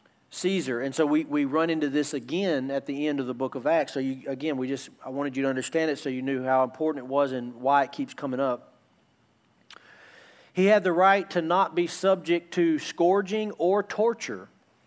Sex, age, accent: male, 40-59, American